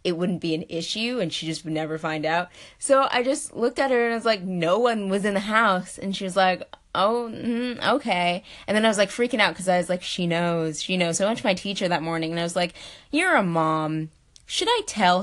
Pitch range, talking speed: 165-195 Hz, 270 wpm